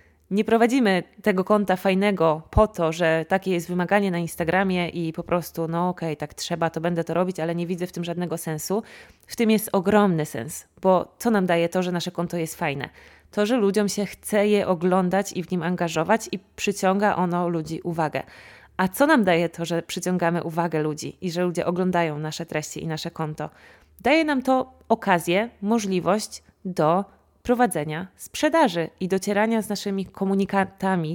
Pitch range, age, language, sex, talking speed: 170-200 Hz, 20-39, Polish, female, 180 wpm